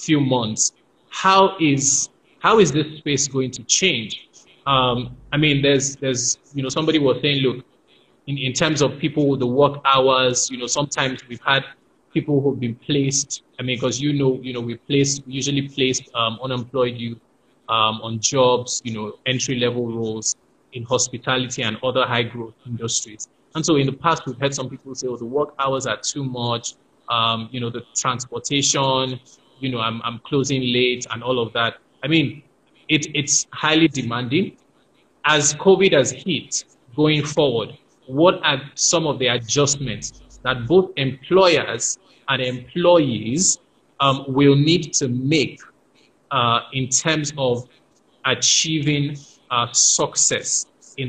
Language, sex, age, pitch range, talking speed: English, male, 20-39, 125-145 Hz, 160 wpm